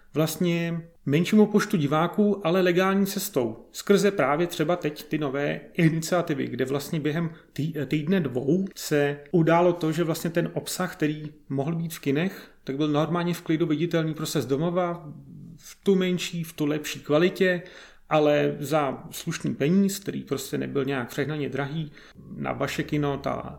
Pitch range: 140-165 Hz